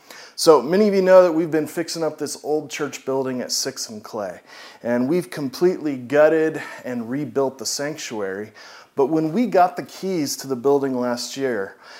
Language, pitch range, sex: English, 130-170 Hz, male